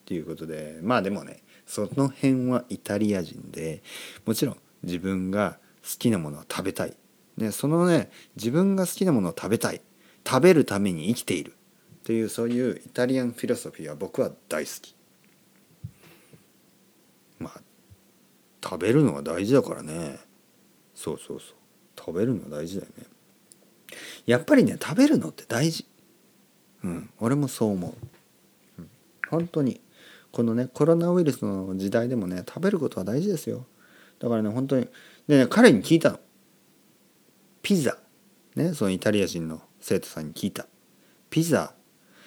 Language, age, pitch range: Japanese, 40-59, 95-150 Hz